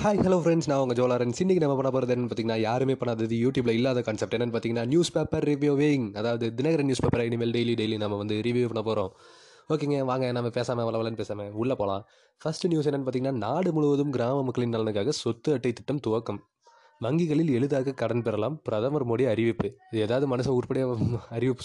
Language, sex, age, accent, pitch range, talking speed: Tamil, male, 20-39, native, 115-145 Hz, 185 wpm